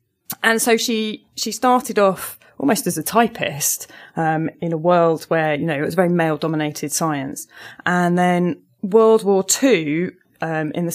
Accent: British